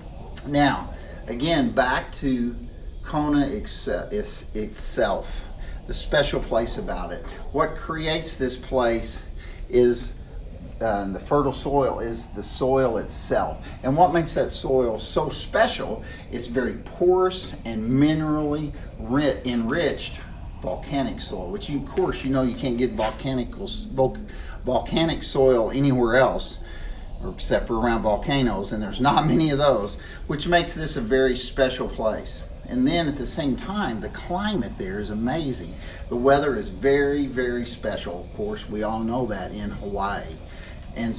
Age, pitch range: 50-69, 95-135 Hz